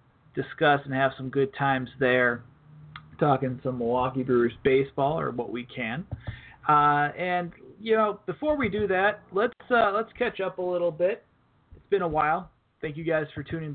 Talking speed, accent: 180 wpm, American